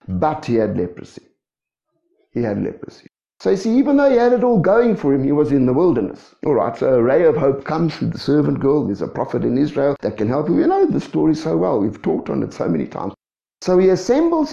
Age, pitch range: 60-79, 130-195 Hz